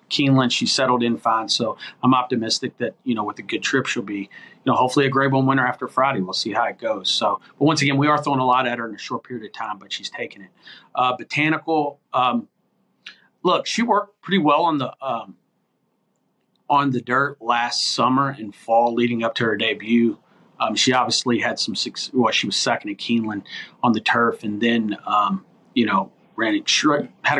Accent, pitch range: American, 115-145 Hz